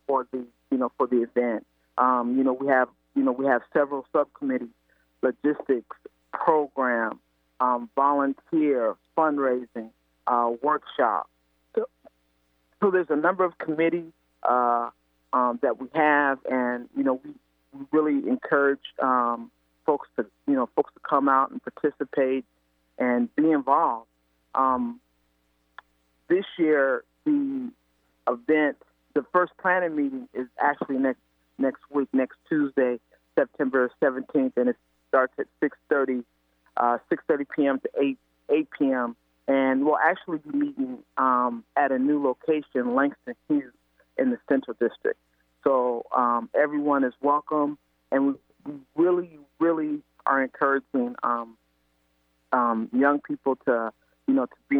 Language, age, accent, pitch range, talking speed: English, 40-59, American, 120-150 Hz, 135 wpm